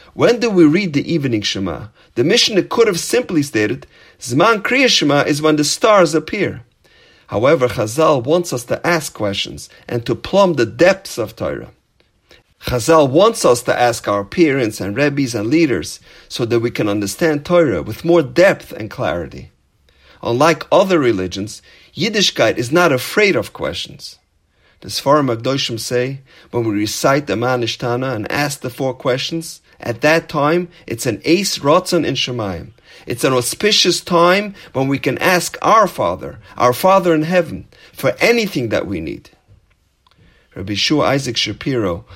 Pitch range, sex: 120-165 Hz, male